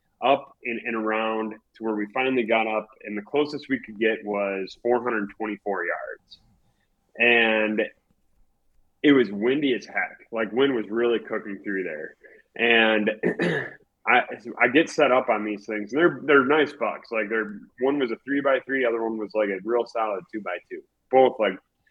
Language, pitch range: English, 105-135 Hz